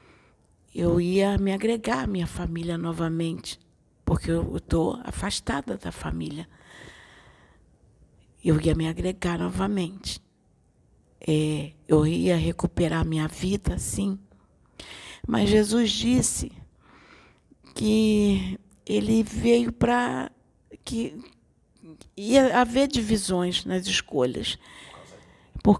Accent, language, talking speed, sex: Brazilian, Portuguese, 95 wpm, female